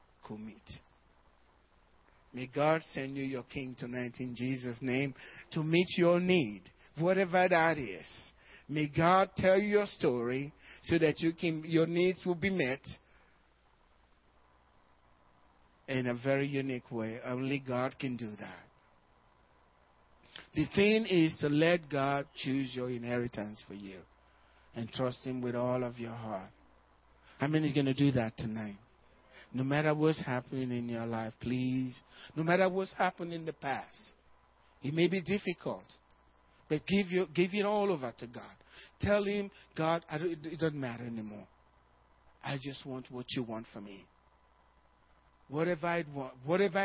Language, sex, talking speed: English, male, 150 wpm